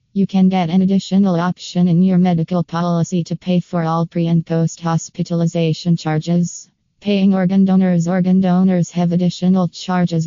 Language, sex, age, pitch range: English, female, 20-39, 165-180 Hz